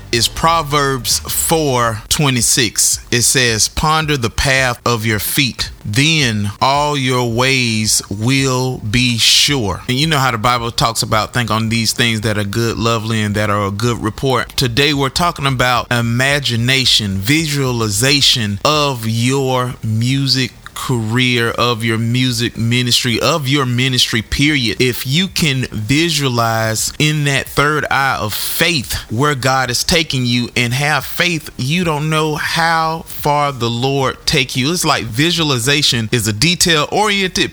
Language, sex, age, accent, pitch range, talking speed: English, male, 30-49, American, 115-150 Hz, 150 wpm